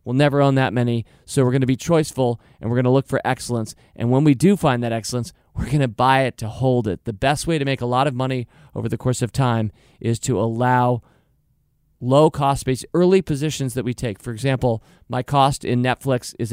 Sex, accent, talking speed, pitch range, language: male, American, 230 wpm, 115-135 Hz, English